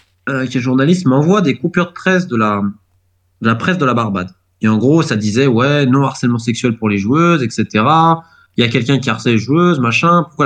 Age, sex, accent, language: 20-39, male, French, French